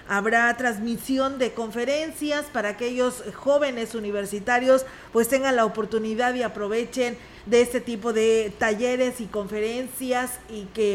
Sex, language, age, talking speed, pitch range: female, Spanish, 40-59, 125 wpm, 215-250 Hz